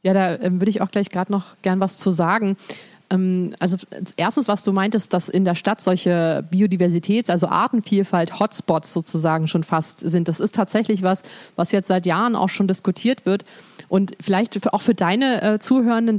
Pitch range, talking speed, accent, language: 185-220 Hz, 190 wpm, German, German